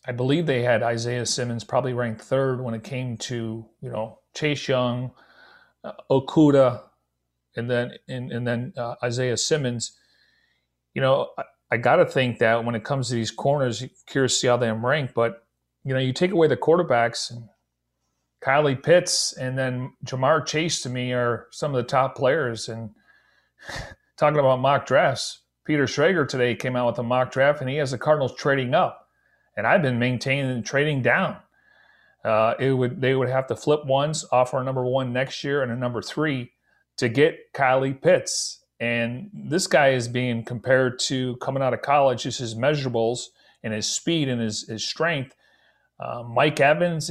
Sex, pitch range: male, 120-140 Hz